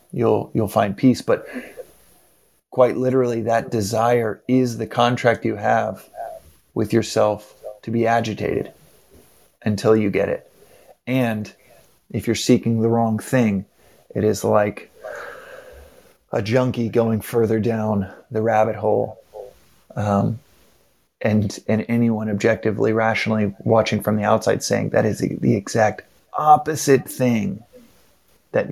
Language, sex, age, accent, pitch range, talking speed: English, male, 30-49, American, 110-120 Hz, 125 wpm